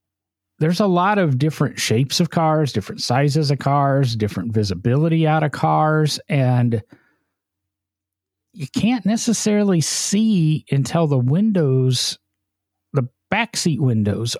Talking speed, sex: 115 wpm, male